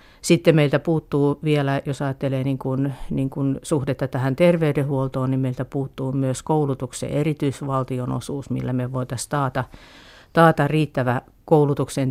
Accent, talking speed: native, 115 wpm